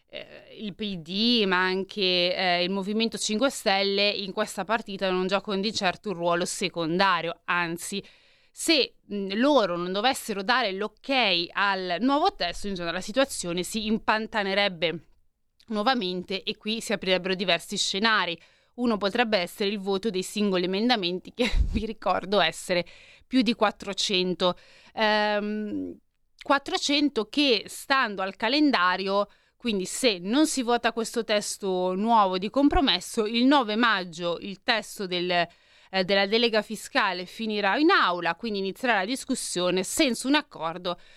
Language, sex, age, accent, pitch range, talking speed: Italian, female, 20-39, native, 180-230 Hz, 135 wpm